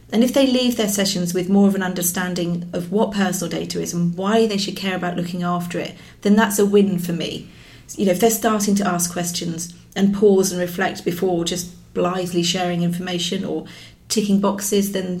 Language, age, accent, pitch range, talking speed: English, 40-59, British, 180-215 Hz, 205 wpm